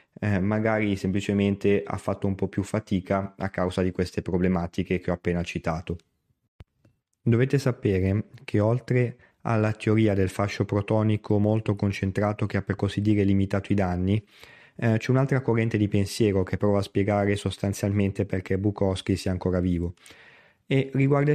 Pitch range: 95-115 Hz